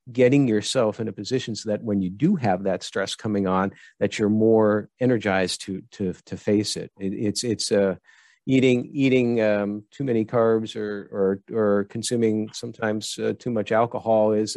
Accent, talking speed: American, 180 wpm